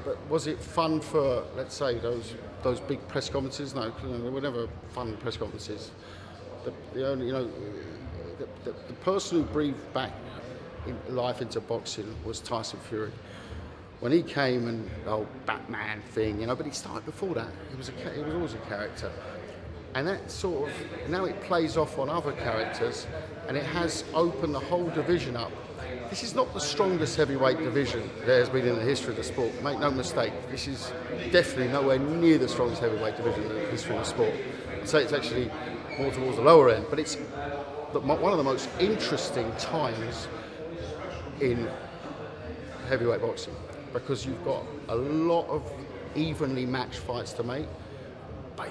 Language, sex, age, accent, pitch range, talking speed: English, male, 50-69, British, 110-155 Hz, 180 wpm